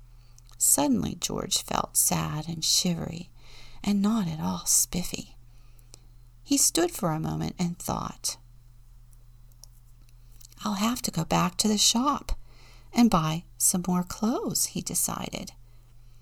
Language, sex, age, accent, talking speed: English, female, 50-69, American, 120 wpm